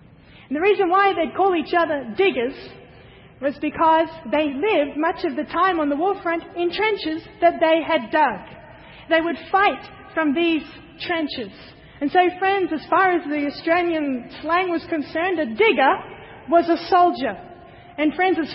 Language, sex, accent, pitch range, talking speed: English, female, Australian, 300-360 Hz, 165 wpm